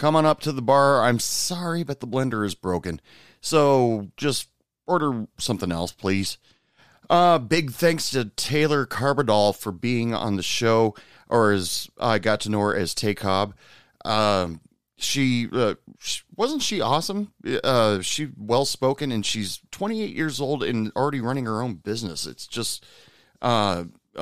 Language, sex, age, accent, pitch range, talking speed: English, male, 30-49, American, 105-140 Hz, 155 wpm